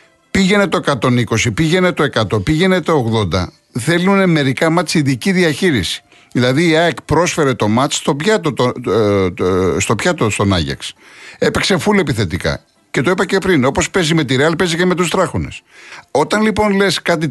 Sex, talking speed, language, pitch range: male, 160 wpm, Greek, 120-175 Hz